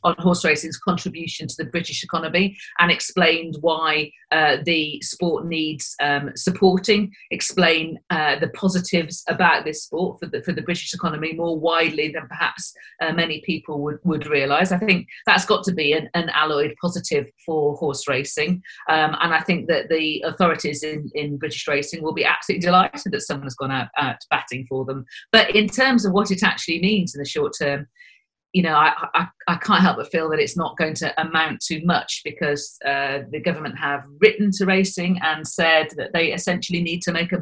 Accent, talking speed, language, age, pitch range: British, 195 wpm, English, 40-59, 150-185 Hz